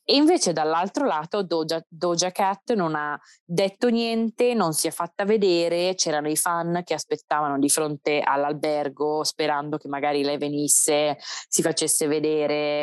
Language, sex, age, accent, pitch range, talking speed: Italian, female, 20-39, native, 150-170 Hz, 150 wpm